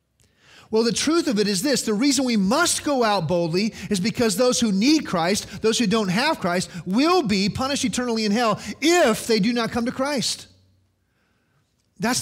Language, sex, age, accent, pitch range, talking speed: English, male, 30-49, American, 145-225 Hz, 190 wpm